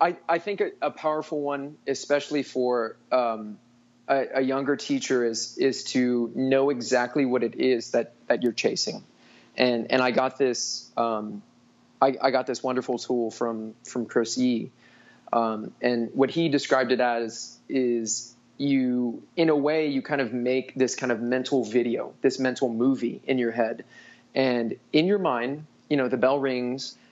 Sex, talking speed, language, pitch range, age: male, 175 wpm, English, 120-135 Hz, 20-39